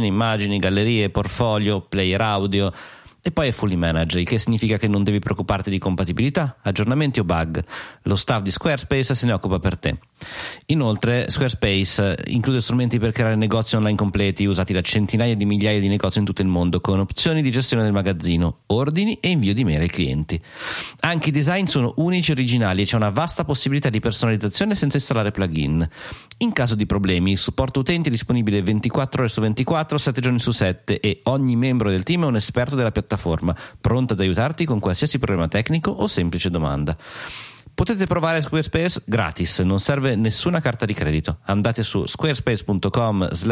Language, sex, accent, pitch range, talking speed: Italian, male, native, 95-135 Hz, 180 wpm